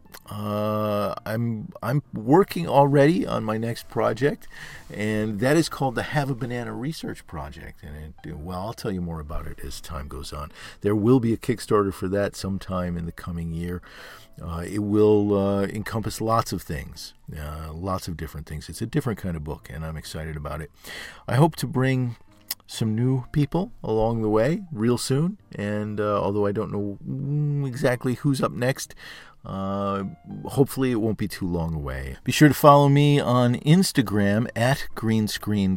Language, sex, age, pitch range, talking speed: English, male, 40-59, 85-115 Hz, 180 wpm